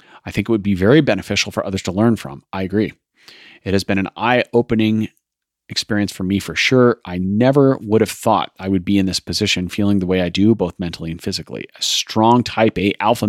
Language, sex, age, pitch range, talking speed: English, male, 30-49, 90-115 Hz, 220 wpm